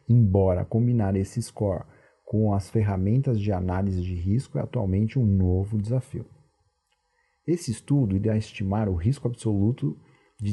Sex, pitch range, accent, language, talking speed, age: male, 100-120 Hz, Brazilian, Portuguese, 135 wpm, 40-59